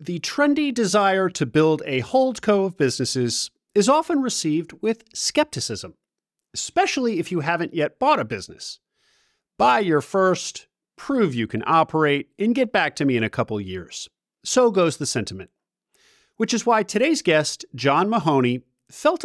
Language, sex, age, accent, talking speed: English, male, 40-59, American, 155 wpm